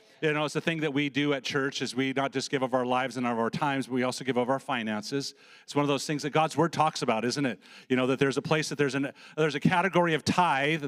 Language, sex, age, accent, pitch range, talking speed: English, male, 40-59, American, 140-165 Hz, 305 wpm